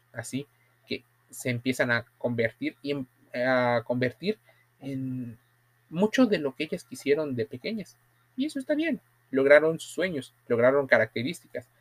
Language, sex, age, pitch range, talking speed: Spanish, male, 30-49, 120-145 Hz, 135 wpm